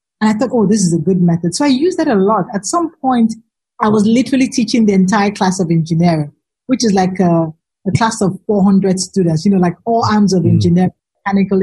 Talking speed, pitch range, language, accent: 225 wpm, 180-225 Hz, English, Nigerian